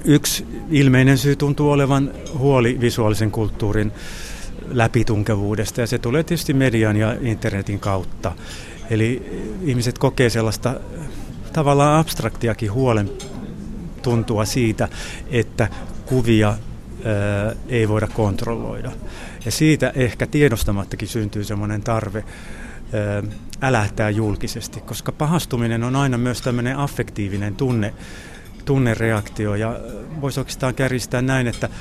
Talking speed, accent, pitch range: 105 wpm, native, 110-130 Hz